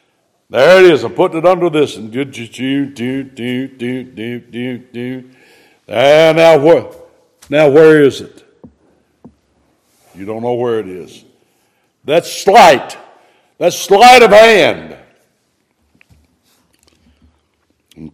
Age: 60-79